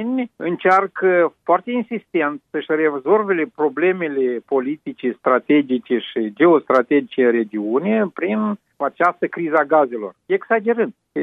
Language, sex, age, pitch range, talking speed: Romanian, male, 50-69, 135-190 Hz, 95 wpm